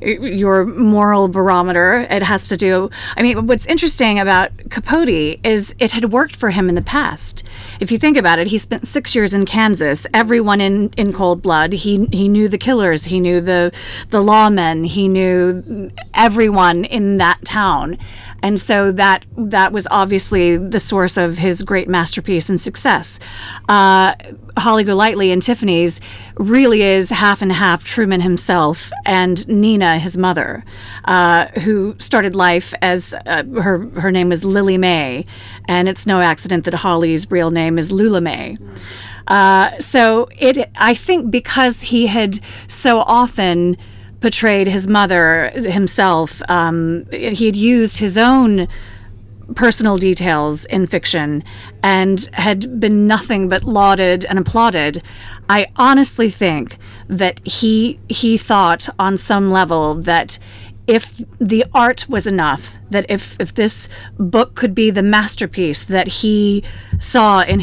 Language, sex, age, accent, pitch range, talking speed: English, female, 30-49, American, 170-220 Hz, 150 wpm